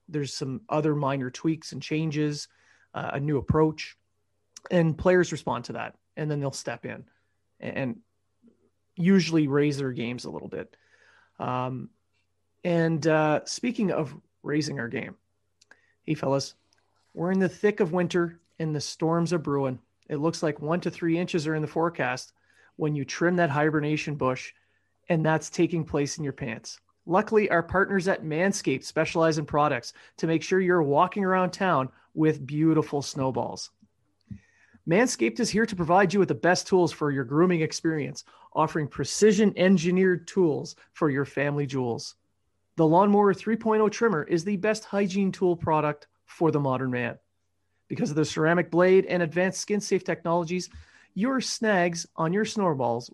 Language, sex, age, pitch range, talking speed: English, male, 30-49, 145-180 Hz, 160 wpm